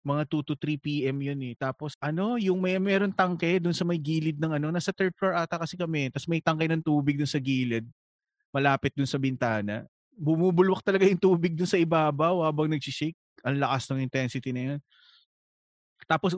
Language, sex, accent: Filipino, male, native